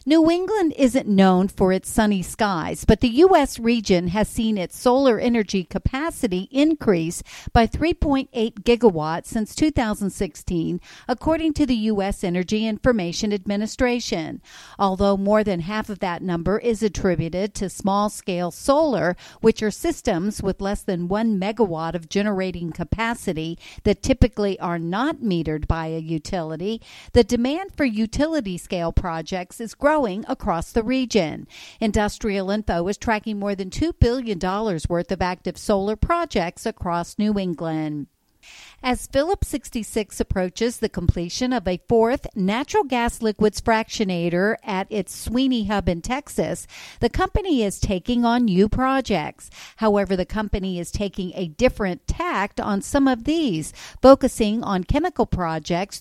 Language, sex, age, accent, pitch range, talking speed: English, female, 50-69, American, 185-240 Hz, 140 wpm